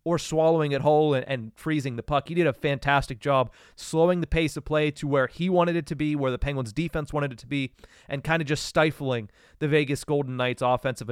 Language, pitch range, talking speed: English, 130-165 Hz, 230 wpm